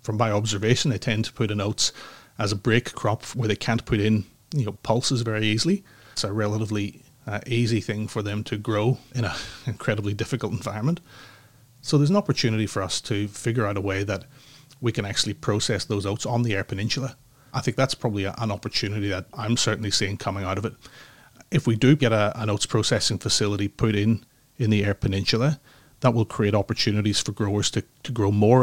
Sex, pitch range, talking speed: male, 105-125 Hz, 210 wpm